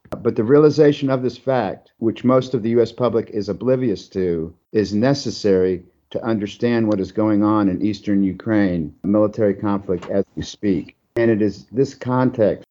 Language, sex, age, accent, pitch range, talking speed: English, male, 50-69, American, 100-115 Hz, 175 wpm